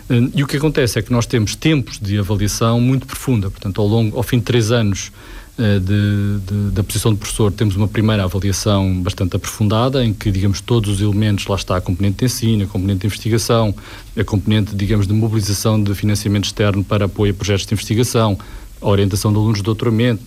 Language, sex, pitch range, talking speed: Portuguese, male, 100-120 Hz, 205 wpm